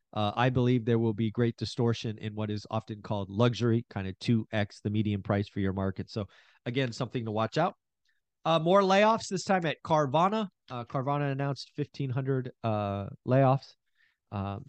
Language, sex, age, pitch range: English, male, 40-59, 115-150 Hz